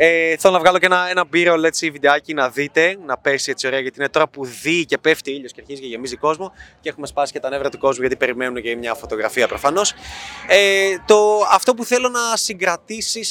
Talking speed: 225 wpm